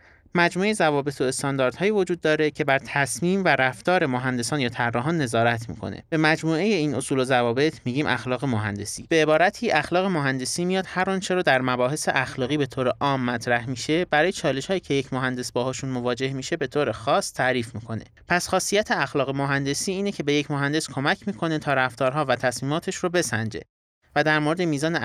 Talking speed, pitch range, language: 185 wpm, 120-160 Hz, Persian